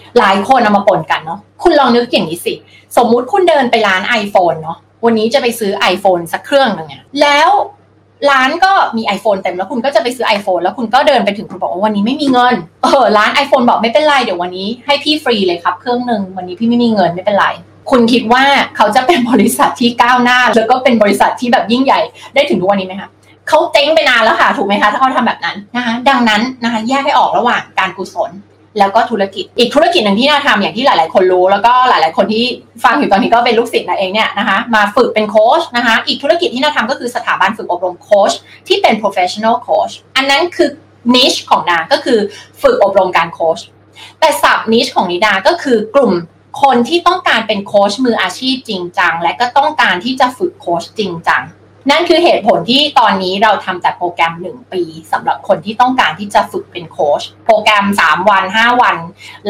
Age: 20-39